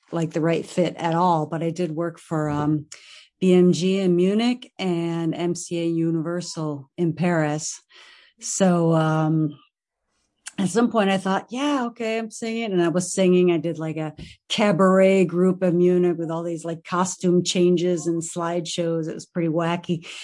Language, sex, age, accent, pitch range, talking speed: English, female, 40-59, American, 165-195 Hz, 165 wpm